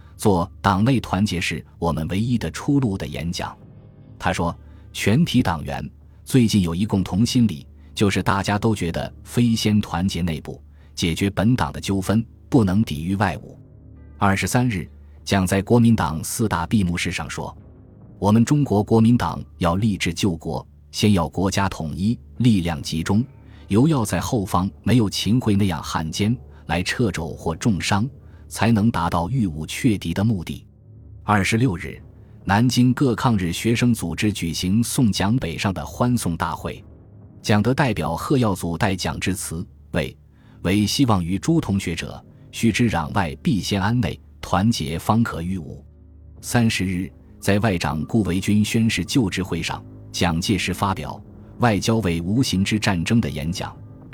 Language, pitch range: Chinese, 85-115 Hz